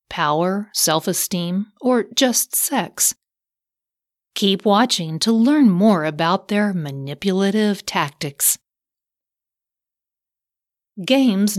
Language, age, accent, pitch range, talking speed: English, 40-59, American, 165-215 Hz, 80 wpm